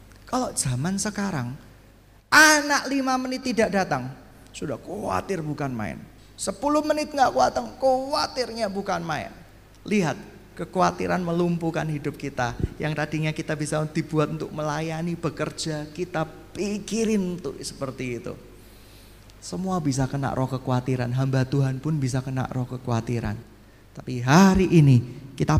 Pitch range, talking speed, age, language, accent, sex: 120-190 Hz, 125 wpm, 30-49, Indonesian, native, male